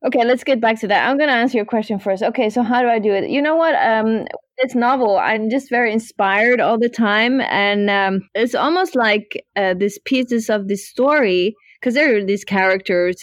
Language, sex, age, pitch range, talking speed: English, female, 20-39, 190-240 Hz, 220 wpm